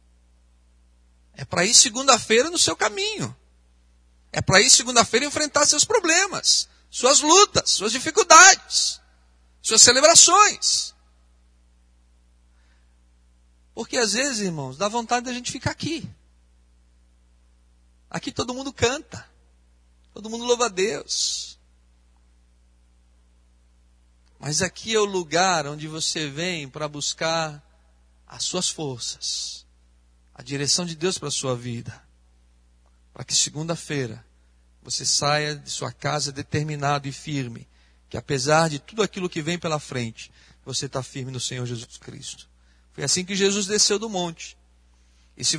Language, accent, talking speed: Portuguese, Brazilian, 125 wpm